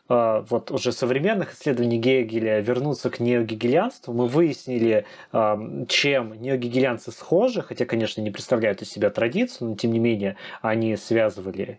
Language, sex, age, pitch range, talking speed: Russian, male, 20-39, 110-155 Hz, 130 wpm